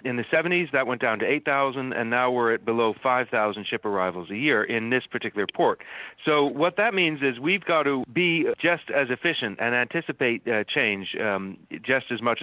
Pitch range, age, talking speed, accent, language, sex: 120-150 Hz, 40-59, 205 wpm, American, English, male